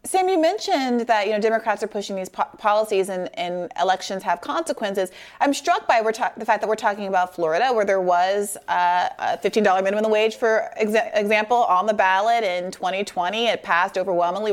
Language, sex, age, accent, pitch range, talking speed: English, female, 30-49, American, 185-225 Hz, 180 wpm